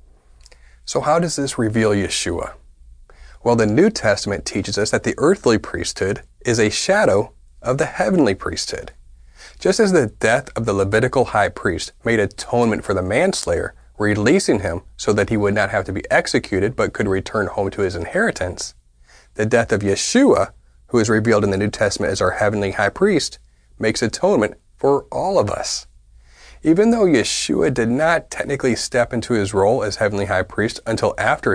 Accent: American